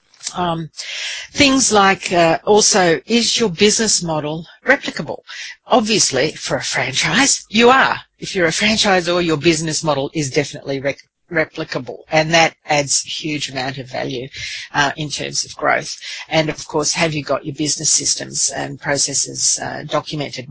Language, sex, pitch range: English, female, 145-180 Hz